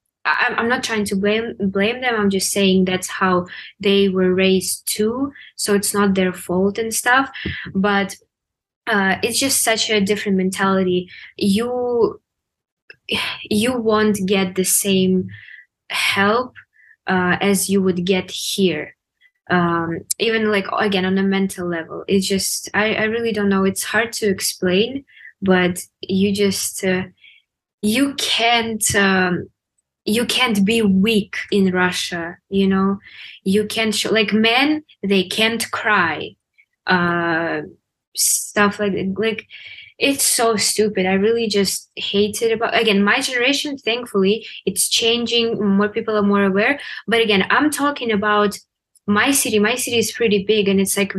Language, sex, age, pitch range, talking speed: English, female, 20-39, 190-225 Hz, 150 wpm